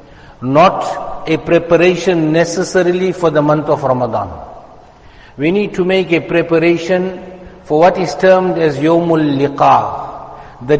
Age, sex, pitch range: 60-79, male, 155-185 Hz